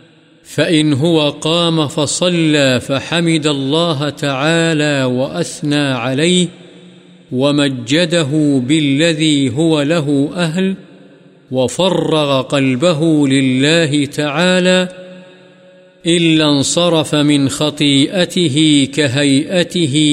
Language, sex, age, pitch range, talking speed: Urdu, male, 50-69, 140-165 Hz, 70 wpm